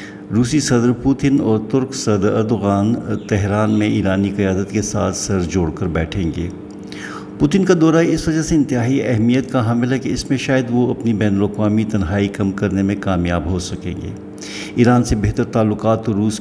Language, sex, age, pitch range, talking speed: Urdu, male, 60-79, 100-115 Hz, 185 wpm